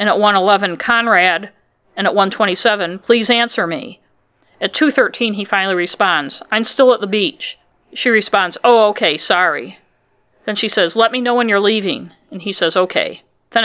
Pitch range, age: 185-230 Hz, 50-69